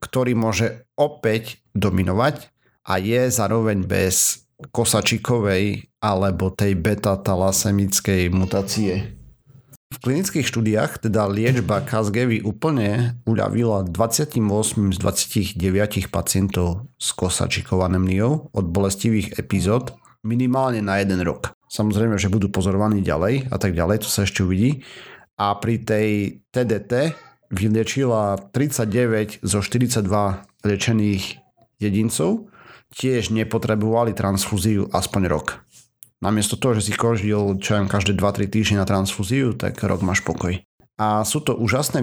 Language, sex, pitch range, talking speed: Slovak, male, 95-115 Hz, 115 wpm